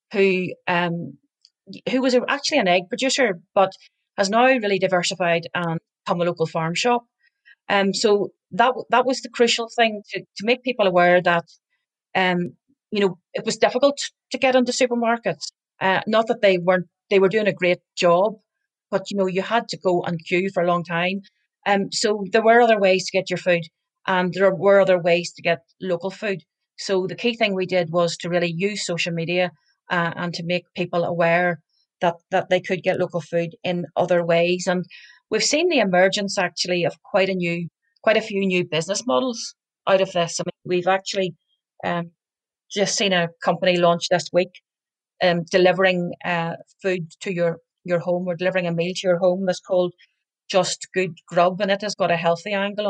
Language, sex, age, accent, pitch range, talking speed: English, female, 30-49, Irish, 175-210 Hz, 195 wpm